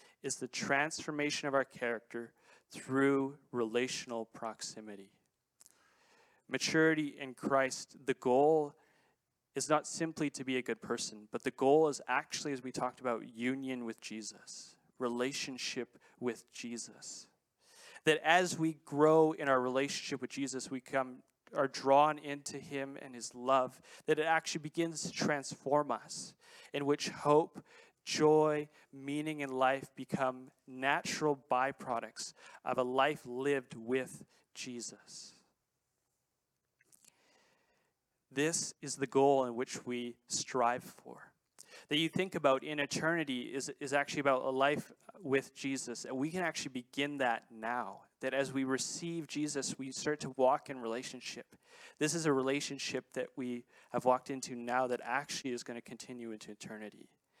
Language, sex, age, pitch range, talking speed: English, male, 30-49, 125-150 Hz, 145 wpm